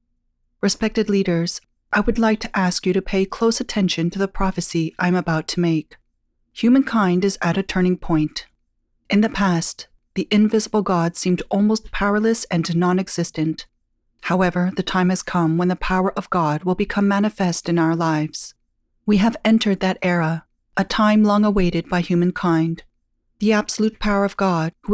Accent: American